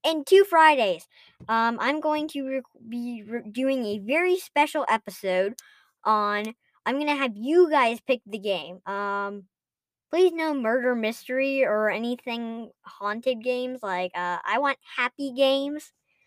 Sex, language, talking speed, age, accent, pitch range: male, English, 135 wpm, 10-29, American, 205-270 Hz